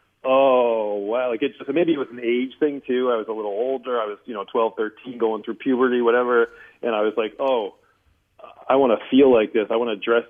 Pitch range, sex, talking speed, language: 105-120 Hz, male, 245 wpm, English